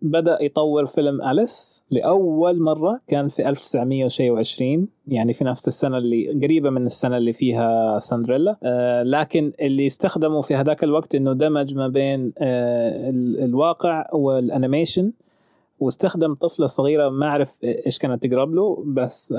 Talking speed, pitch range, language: 130 wpm, 125-145 Hz, Arabic